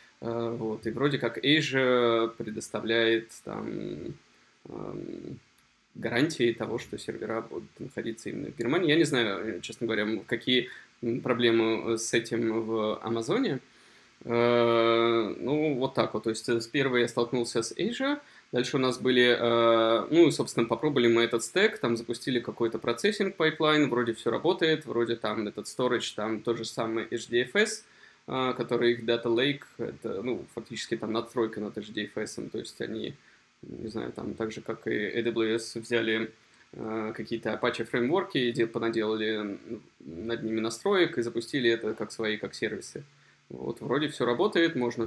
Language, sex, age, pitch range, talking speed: Russian, male, 20-39, 115-120 Hz, 150 wpm